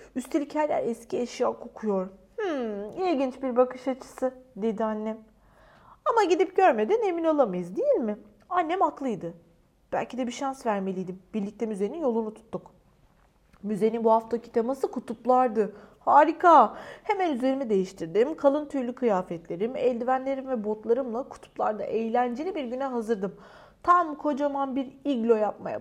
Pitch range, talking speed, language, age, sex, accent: 225-350 Hz, 130 wpm, Turkish, 30-49, female, native